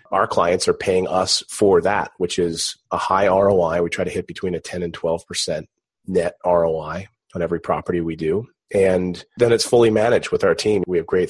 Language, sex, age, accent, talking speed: English, male, 30-49, American, 210 wpm